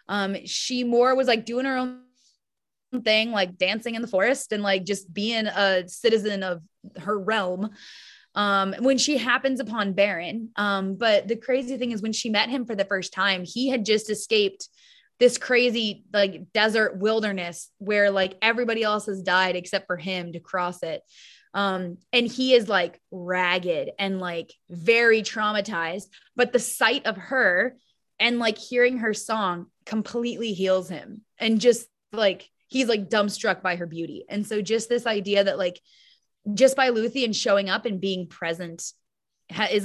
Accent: American